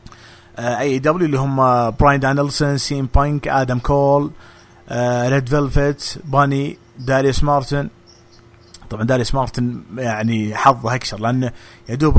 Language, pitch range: English, 115-150 Hz